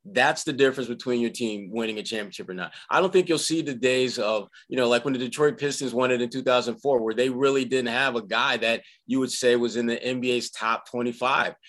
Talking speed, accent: 240 wpm, American